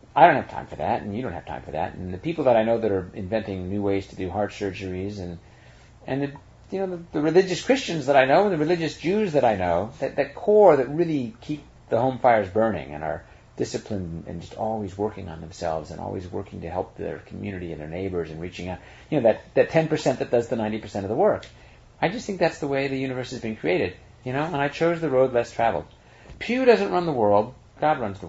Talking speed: 250 wpm